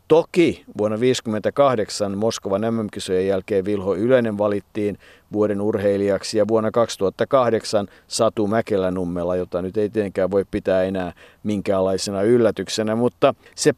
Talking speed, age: 120 wpm, 50-69